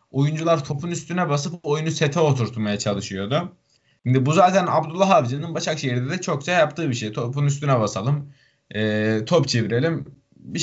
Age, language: 20-39, Turkish